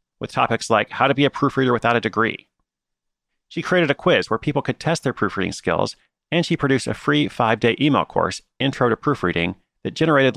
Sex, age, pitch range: male, 30-49, 100-135 Hz